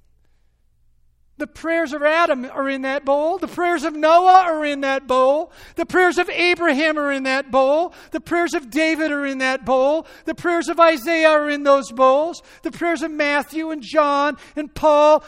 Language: English